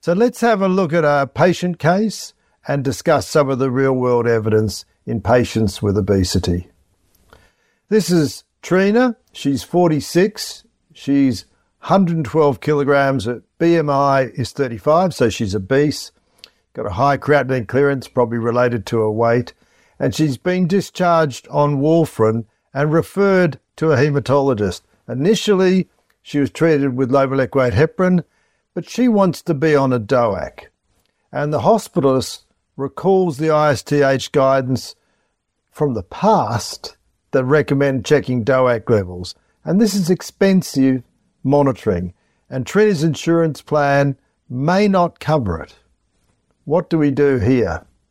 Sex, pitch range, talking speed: male, 120-170 Hz, 130 wpm